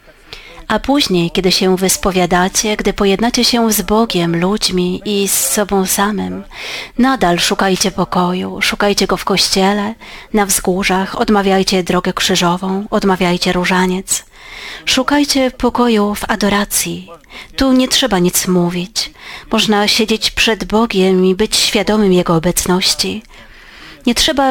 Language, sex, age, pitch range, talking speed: Polish, female, 30-49, 185-225 Hz, 120 wpm